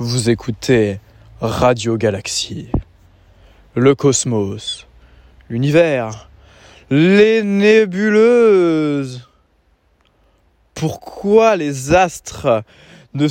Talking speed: 60 wpm